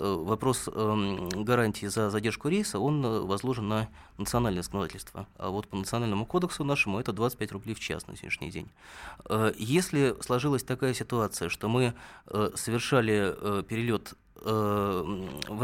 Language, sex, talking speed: Russian, male, 145 wpm